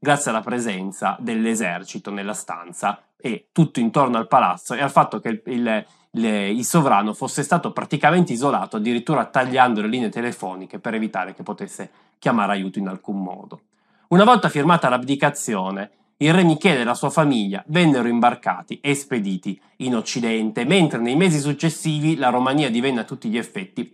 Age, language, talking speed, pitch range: 20-39, Italian, 165 wpm, 115-175 Hz